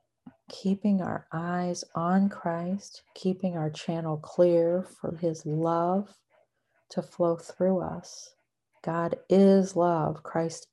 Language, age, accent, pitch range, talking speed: English, 40-59, American, 165-190 Hz, 110 wpm